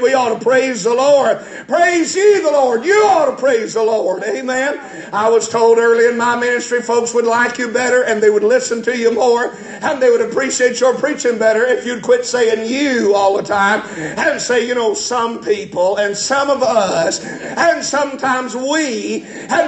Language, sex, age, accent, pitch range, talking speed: English, male, 50-69, American, 245-320 Hz, 200 wpm